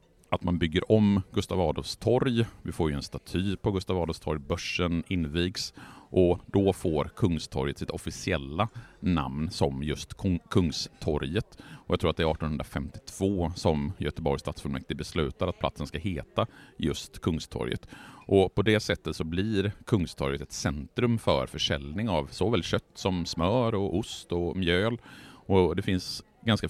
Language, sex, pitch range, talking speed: Swedish, male, 80-105 Hz, 155 wpm